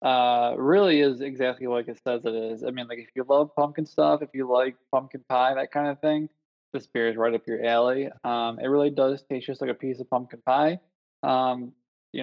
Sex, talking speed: male, 230 wpm